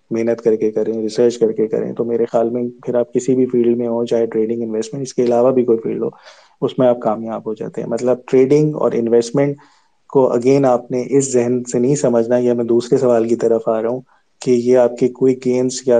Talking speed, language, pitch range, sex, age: 245 wpm, Urdu, 115-125 Hz, male, 20-39